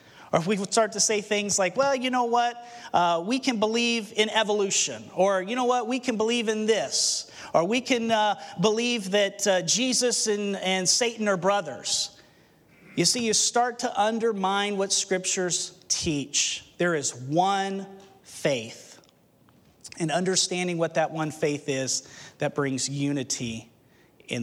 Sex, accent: male, American